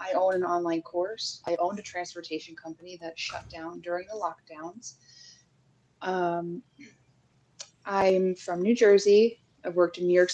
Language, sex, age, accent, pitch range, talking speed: English, female, 20-39, American, 170-220 Hz, 150 wpm